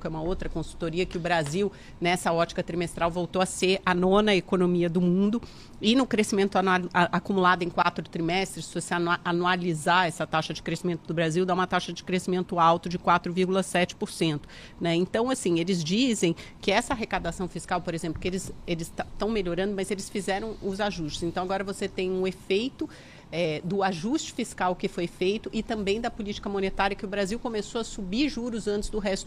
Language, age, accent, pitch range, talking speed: Portuguese, 40-59, Brazilian, 175-205 Hz, 185 wpm